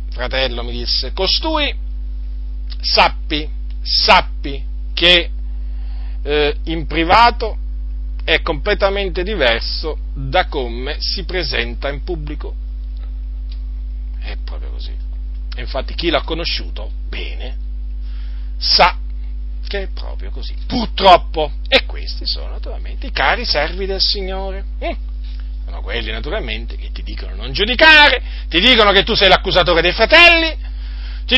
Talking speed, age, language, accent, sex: 115 wpm, 40-59, Italian, native, male